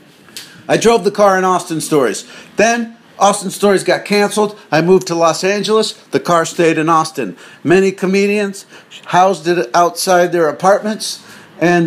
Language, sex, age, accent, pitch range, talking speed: English, male, 50-69, American, 170-200 Hz, 150 wpm